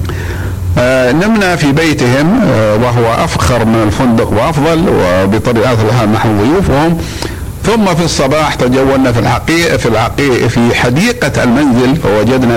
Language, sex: Arabic, male